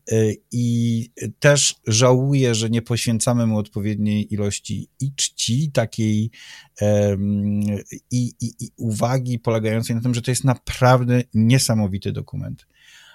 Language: Polish